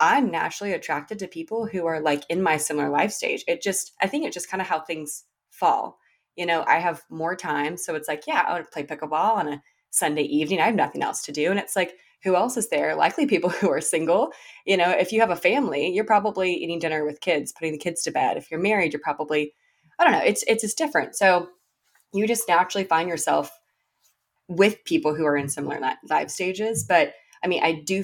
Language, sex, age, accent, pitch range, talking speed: English, female, 20-39, American, 155-190 Hz, 235 wpm